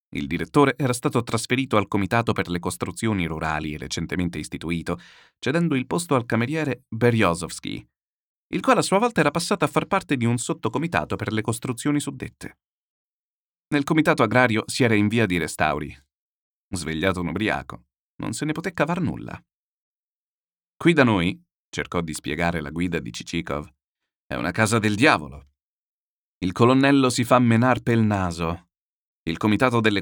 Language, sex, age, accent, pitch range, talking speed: Italian, male, 30-49, native, 85-140 Hz, 160 wpm